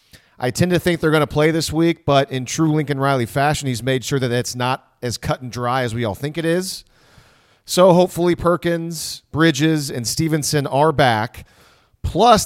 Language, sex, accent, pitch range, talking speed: English, male, American, 125-170 Hz, 195 wpm